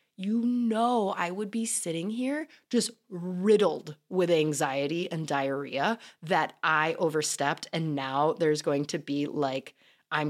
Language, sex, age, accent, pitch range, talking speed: English, female, 20-39, American, 150-215 Hz, 140 wpm